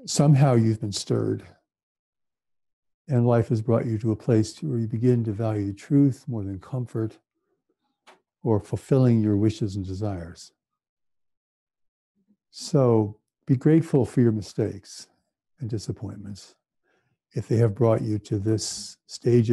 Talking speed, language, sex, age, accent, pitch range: 130 wpm, English, male, 60-79, American, 105-130 Hz